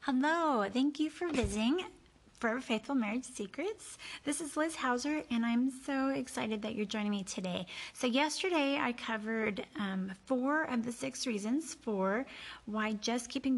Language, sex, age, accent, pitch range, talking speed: English, female, 30-49, American, 195-265 Hz, 160 wpm